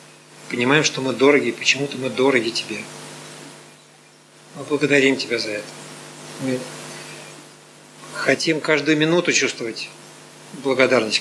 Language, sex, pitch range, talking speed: Russian, male, 120-140 Hz, 105 wpm